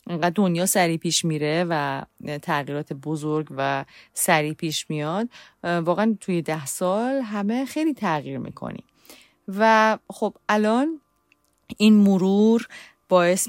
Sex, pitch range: female, 155-195 Hz